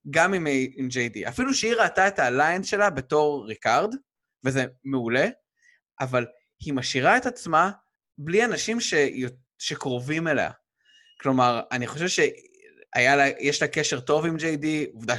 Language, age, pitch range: Hebrew, 20-39, 130-210 Hz